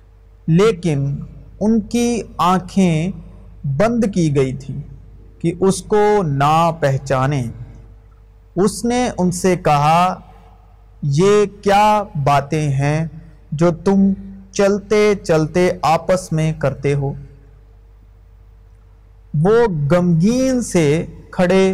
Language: Urdu